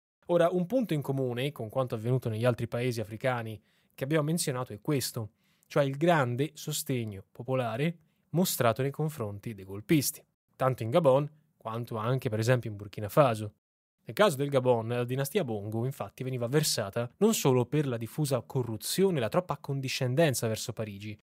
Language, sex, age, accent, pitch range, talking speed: Italian, male, 10-29, native, 115-155 Hz, 165 wpm